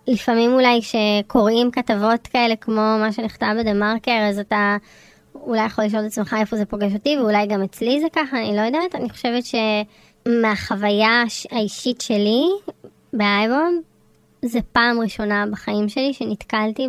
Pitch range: 215-250 Hz